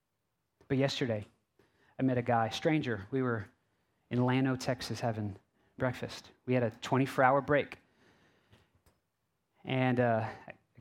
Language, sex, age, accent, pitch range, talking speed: English, male, 30-49, American, 115-165 Hz, 130 wpm